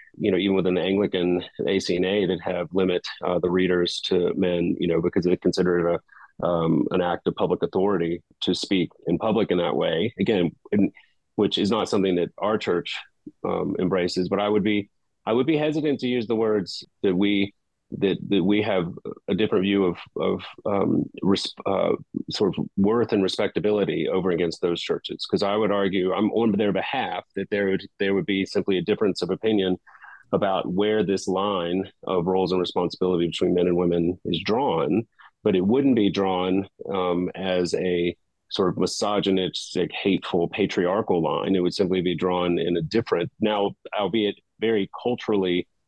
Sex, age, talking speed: male, 30-49, 185 wpm